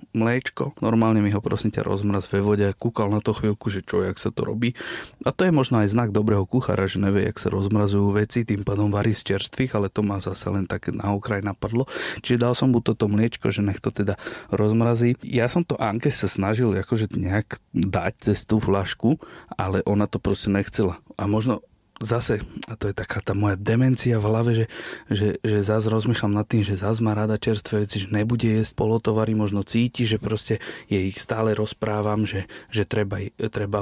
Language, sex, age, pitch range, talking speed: Slovak, male, 30-49, 105-115 Hz, 210 wpm